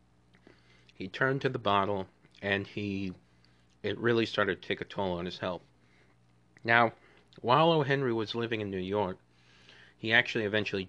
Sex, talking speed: male, 155 wpm